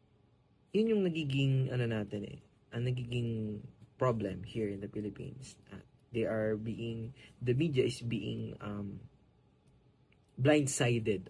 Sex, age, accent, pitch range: male, 20-39, Filipino, 105-130 Hz